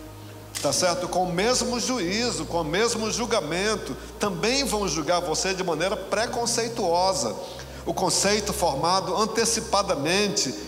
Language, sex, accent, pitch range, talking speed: Portuguese, male, Brazilian, 160-230 Hz, 120 wpm